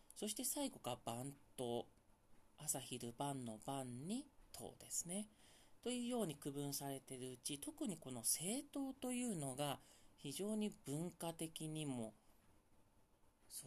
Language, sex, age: Japanese, male, 40-59